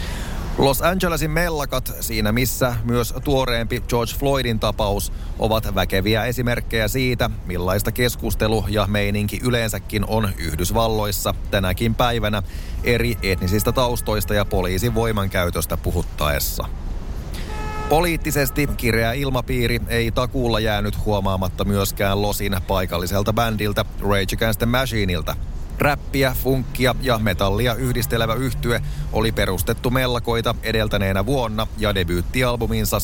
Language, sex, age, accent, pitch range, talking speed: Finnish, male, 30-49, native, 95-120 Hz, 105 wpm